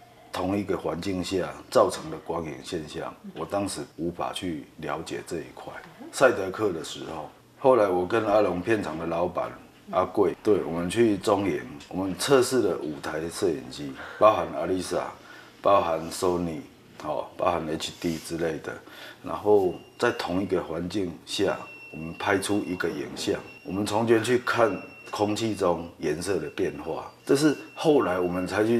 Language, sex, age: Chinese, male, 30-49